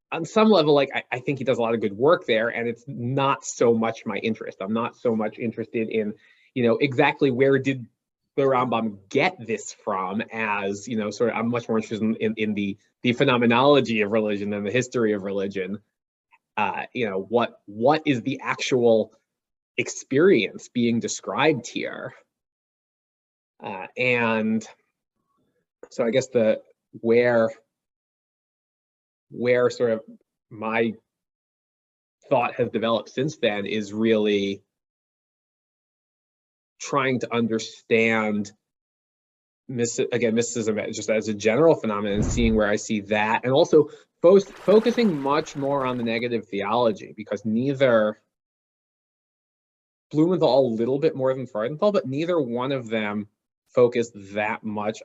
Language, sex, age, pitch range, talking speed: English, male, 20-39, 110-135 Hz, 145 wpm